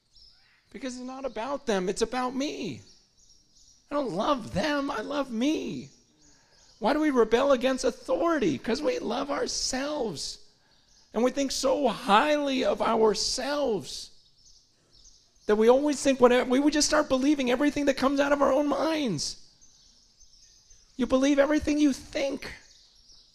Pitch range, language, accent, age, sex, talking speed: 185-270 Hz, English, American, 40-59, male, 140 wpm